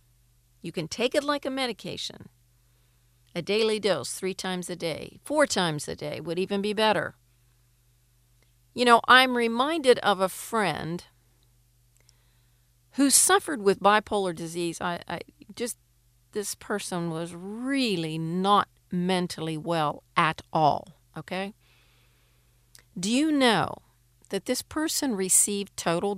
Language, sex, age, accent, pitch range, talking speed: English, female, 50-69, American, 145-205 Hz, 125 wpm